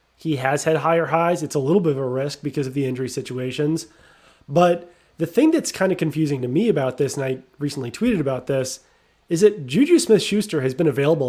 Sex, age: male, 30-49